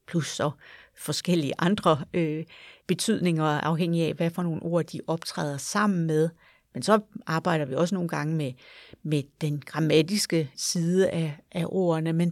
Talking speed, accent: 155 wpm, native